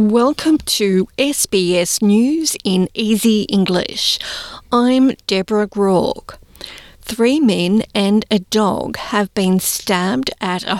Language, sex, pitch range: English, female, 190-230 Hz